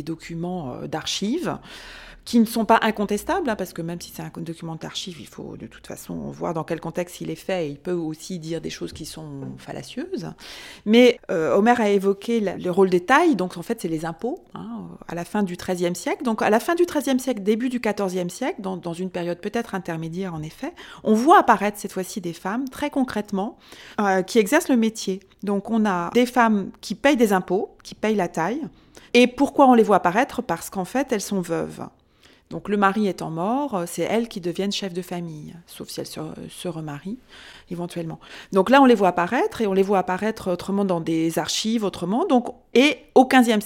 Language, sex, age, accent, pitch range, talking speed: French, female, 30-49, French, 180-235 Hz, 215 wpm